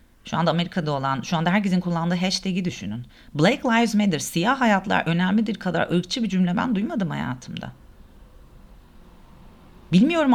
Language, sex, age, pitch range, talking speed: Turkish, female, 40-59, 130-215 Hz, 140 wpm